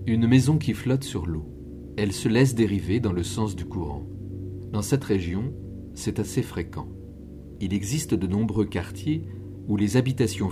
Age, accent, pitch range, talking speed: 50-69, French, 95-115 Hz, 165 wpm